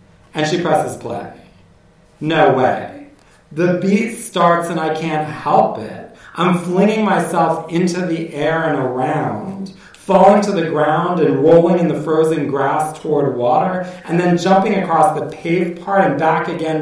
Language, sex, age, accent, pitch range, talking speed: English, male, 40-59, American, 155-190 Hz, 155 wpm